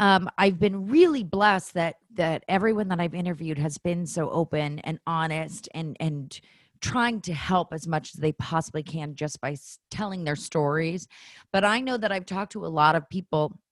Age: 30-49